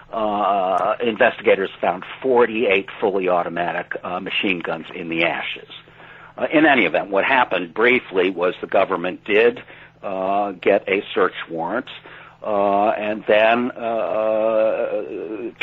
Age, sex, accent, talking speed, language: 60-79, male, American, 125 wpm, English